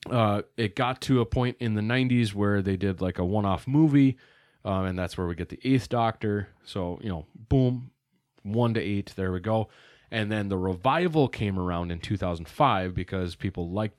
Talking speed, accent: 195 wpm, American